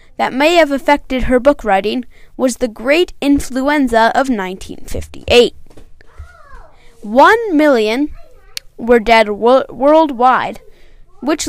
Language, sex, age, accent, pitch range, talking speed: English, female, 20-39, American, 225-295 Hz, 105 wpm